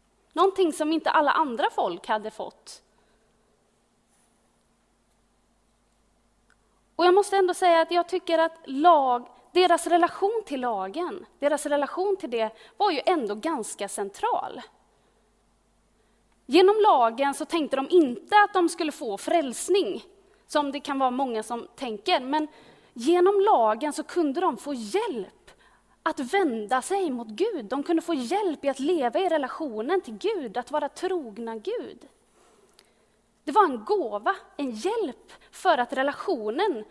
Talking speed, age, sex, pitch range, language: 140 wpm, 30-49, female, 270-380 Hz, Swedish